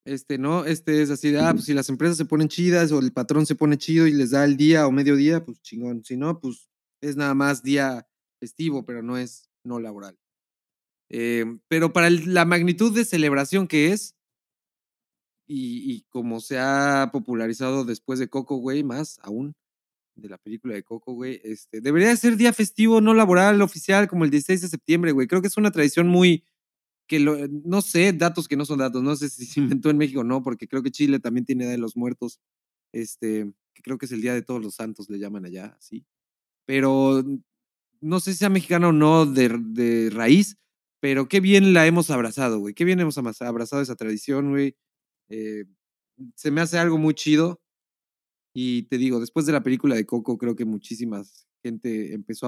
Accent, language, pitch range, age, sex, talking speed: Mexican, Spanish, 120-165 Hz, 30-49, male, 200 wpm